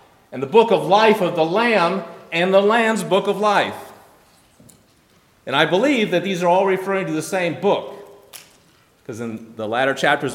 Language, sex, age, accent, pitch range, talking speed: English, male, 40-59, American, 150-205 Hz, 180 wpm